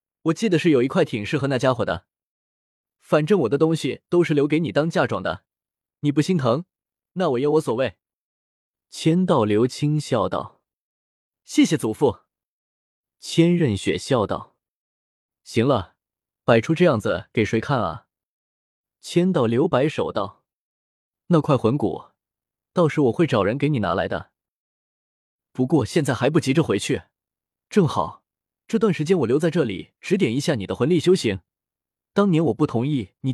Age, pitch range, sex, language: 20-39, 115-170 Hz, male, Chinese